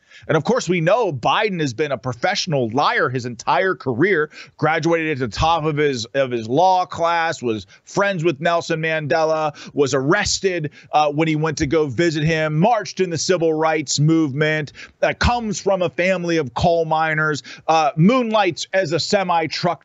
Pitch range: 155-205 Hz